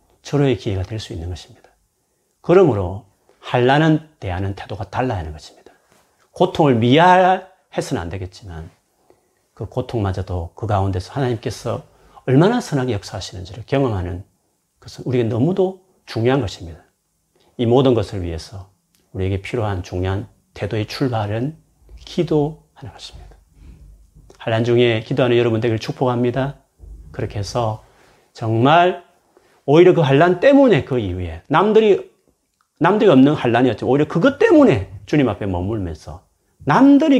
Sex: male